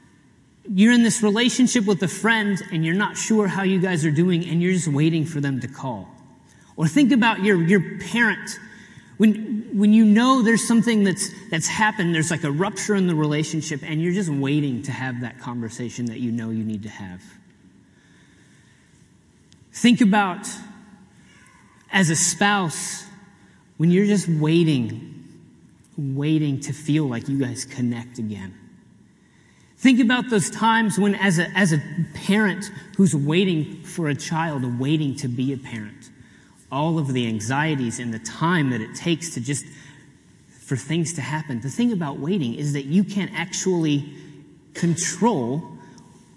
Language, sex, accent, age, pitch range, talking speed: English, male, American, 30-49, 140-205 Hz, 160 wpm